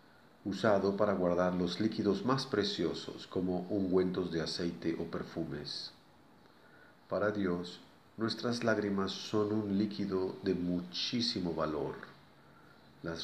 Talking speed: 110 wpm